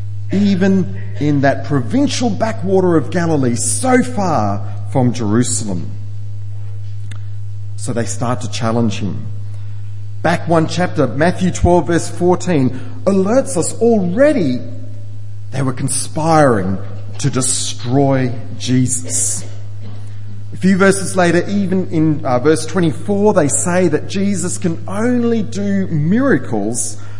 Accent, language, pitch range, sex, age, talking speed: Australian, English, 105-150 Hz, male, 40-59, 110 wpm